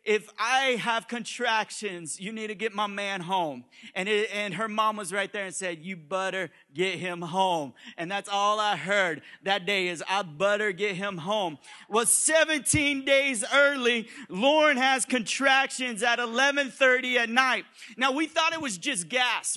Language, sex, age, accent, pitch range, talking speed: English, male, 30-49, American, 165-235 Hz, 175 wpm